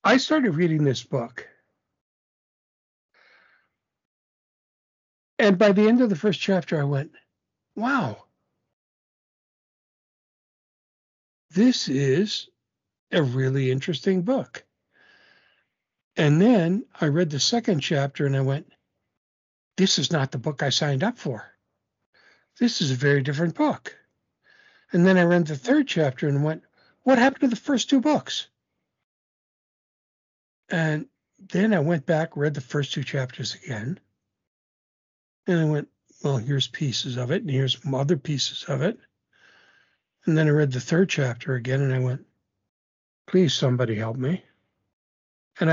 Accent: American